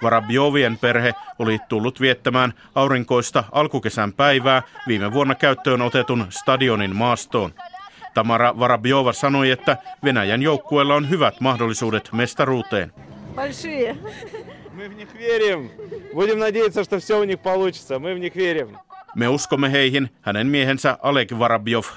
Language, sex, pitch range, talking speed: Finnish, male, 120-150 Hz, 85 wpm